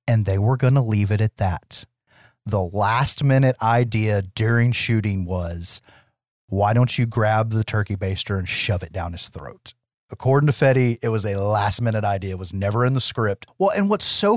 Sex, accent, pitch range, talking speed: male, American, 110-145 Hz, 200 wpm